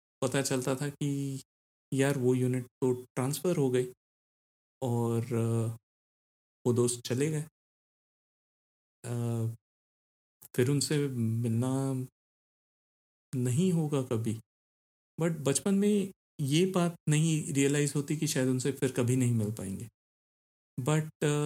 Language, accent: Hindi, native